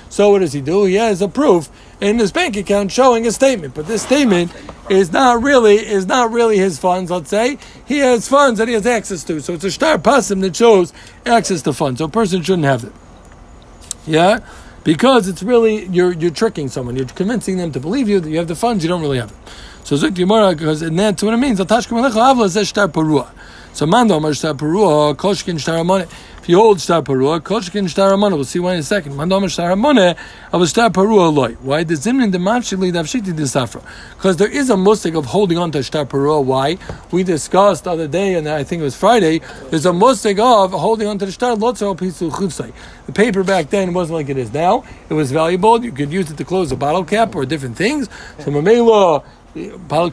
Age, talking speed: 60-79, 190 wpm